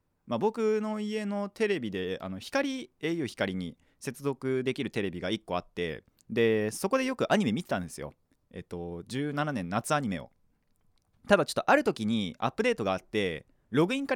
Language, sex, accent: Japanese, male, native